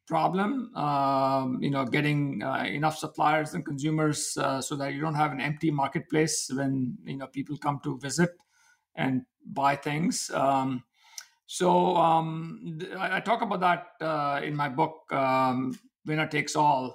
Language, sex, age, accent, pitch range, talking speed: English, male, 50-69, Indian, 140-170 Hz, 160 wpm